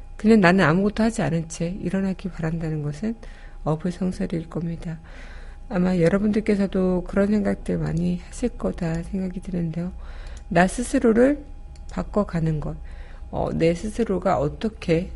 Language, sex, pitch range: Korean, female, 160-195 Hz